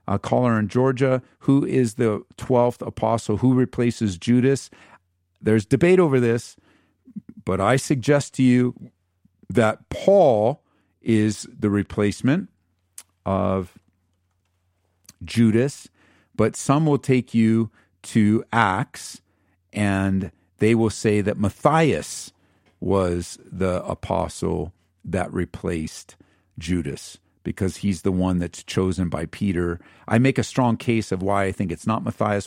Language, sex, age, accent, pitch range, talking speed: English, male, 50-69, American, 95-125 Hz, 120 wpm